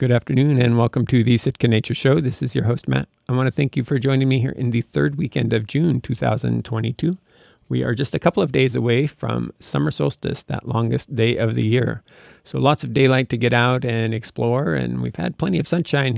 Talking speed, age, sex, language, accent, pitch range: 230 wpm, 50-69, male, English, American, 115-135 Hz